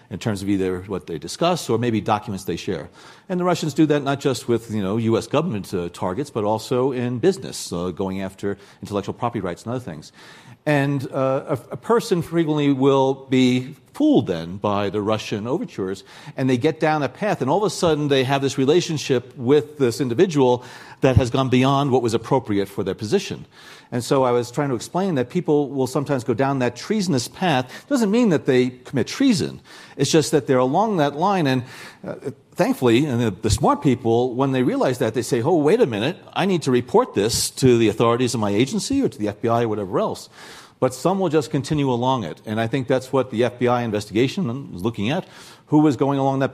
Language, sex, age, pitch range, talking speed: English, male, 50-69, 115-145 Hz, 220 wpm